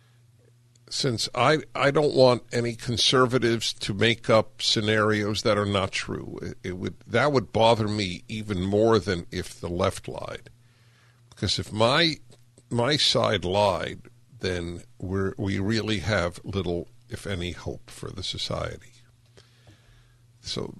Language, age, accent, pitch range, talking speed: English, 60-79, American, 105-125 Hz, 140 wpm